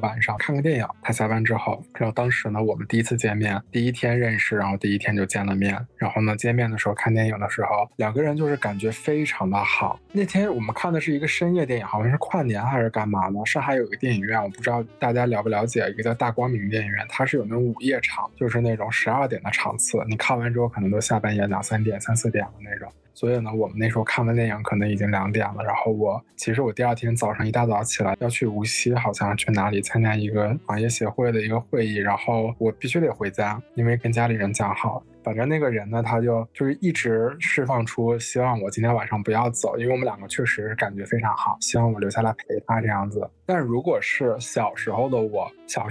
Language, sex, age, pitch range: Chinese, male, 20-39, 105-120 Hz